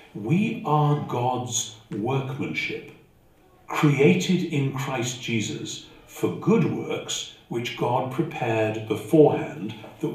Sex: male